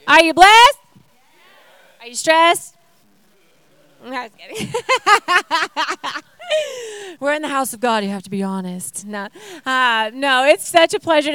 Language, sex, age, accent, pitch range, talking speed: English, female, 30-49, American, 250-355 Hz, 145 wpm